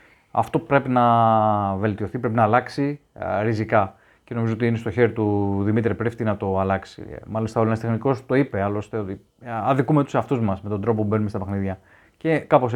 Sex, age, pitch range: male, 30-49, 110-140 Hz